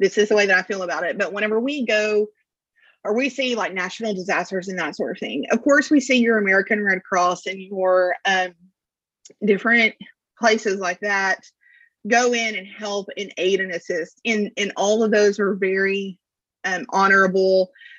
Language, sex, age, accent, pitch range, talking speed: English, female, 30-49, American, 190-230 Hz, 185 wpm